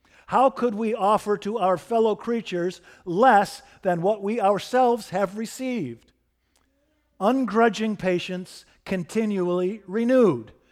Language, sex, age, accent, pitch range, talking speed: English, male, 50-69, American, 155-220 Hz, 105 wpm